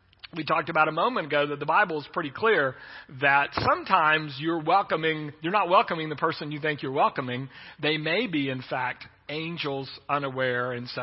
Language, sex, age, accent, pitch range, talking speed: English, male, 40-59, American, 130-170 Hz, 185 wpm